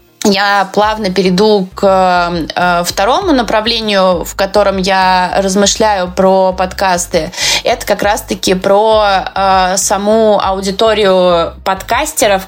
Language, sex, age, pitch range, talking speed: Russian, female, 20-39, 180-205 Hz, 90 wpm